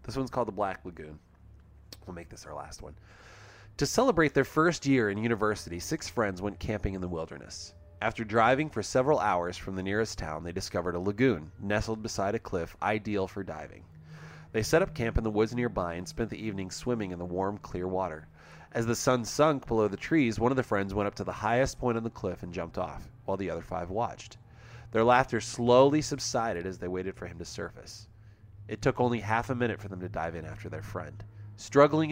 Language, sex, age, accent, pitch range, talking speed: English, male, 30-49, American, 95-115 Hz, 220 wpm